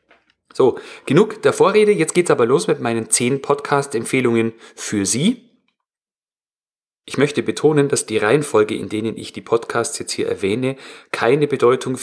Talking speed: 150 wpm